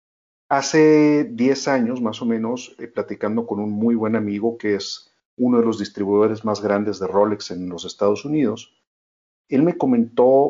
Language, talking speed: Spanish, 170 wpm